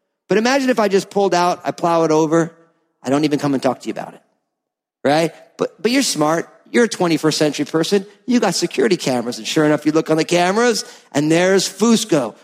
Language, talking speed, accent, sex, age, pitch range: English, 220 wpm, American, male, 50-69, 170-245 Hz